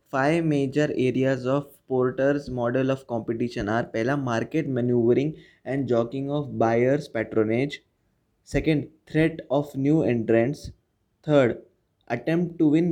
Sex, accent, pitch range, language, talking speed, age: male, native, 120-150 Hz, Hindi, 120 wpm, 20-39